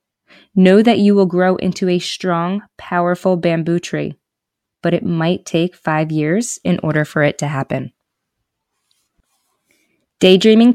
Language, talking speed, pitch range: English, 135 wpm, 165-195 Hz